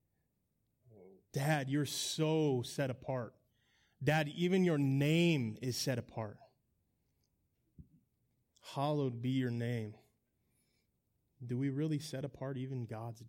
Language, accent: English, American